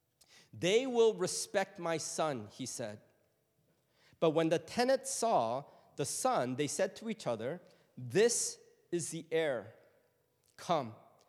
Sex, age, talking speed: male, 40-59, 130 wpm